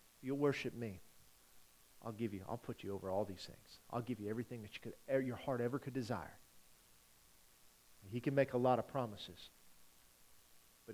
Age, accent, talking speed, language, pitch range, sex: 40-59, American, 170 wpm, English, 115-155 Hz, male